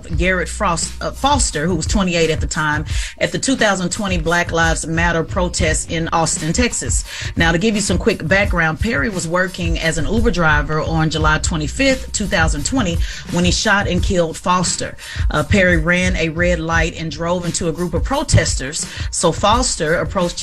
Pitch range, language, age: 160-190 Hz, English, 30-49